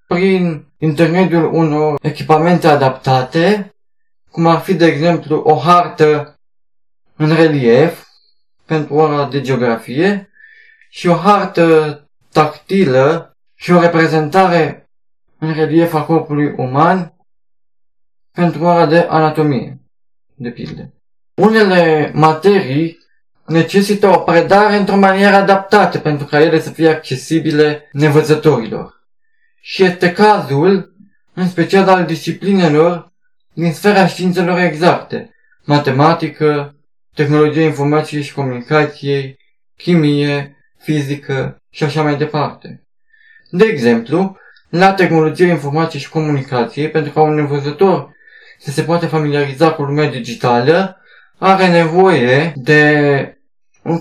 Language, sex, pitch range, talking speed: Romanian, male, 150-185 Hz, 105 wpm